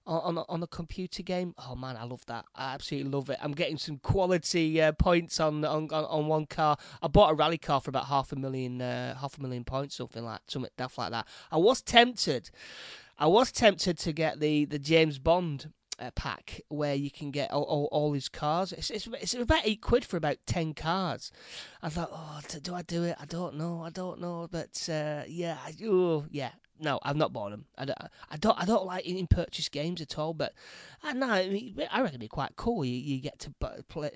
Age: 30-49